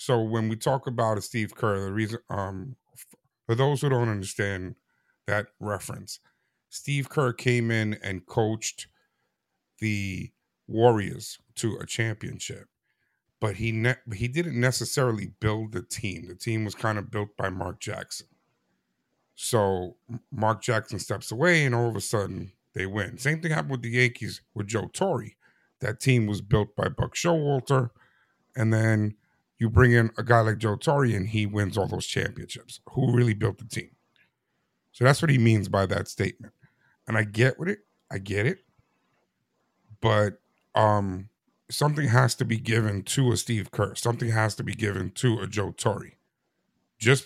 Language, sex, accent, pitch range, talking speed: English, male, American, 105-125 Hz, 170 wpm